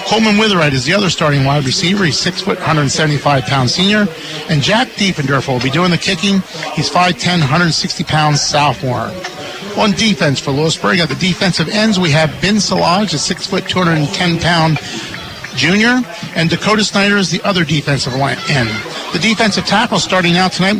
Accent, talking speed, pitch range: American, 160 wpm, 155-195 Hz